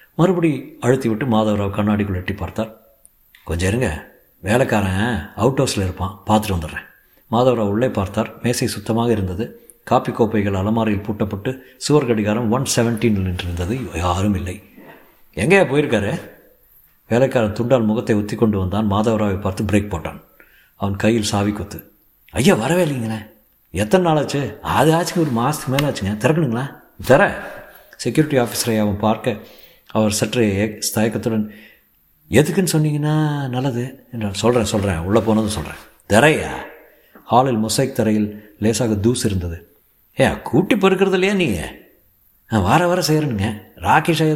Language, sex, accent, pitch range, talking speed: Tamil, male, native, 105-135 Hz, 125 wpm